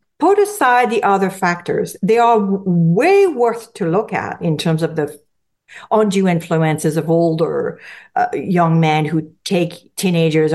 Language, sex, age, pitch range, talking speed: English, female, 50-69, 170-235 Hz, 150 wpm